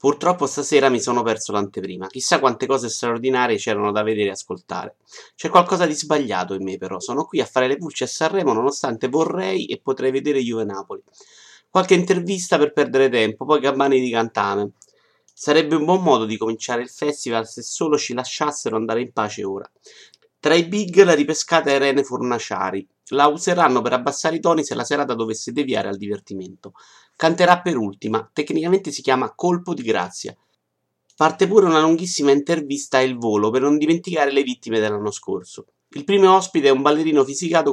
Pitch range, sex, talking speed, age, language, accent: 125-170 Hz, male, 180 wpm, 30-49, Italian, native